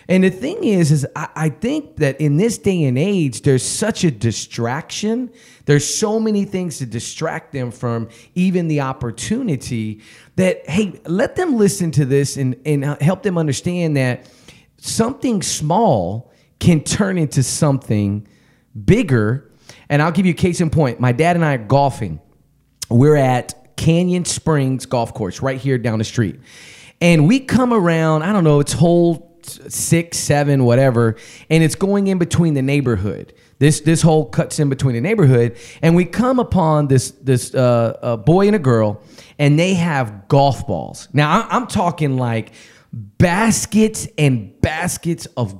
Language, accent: English, American